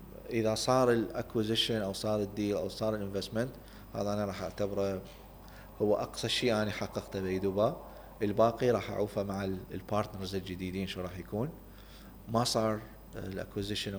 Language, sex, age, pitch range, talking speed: Arabic, male, 30-49, 95-105 Hz, 135 wpm